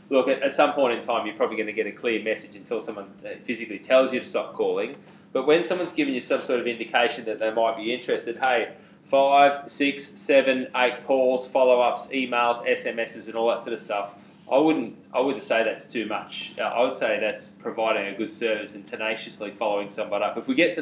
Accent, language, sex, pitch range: Australian, English, male, 110-130 Hz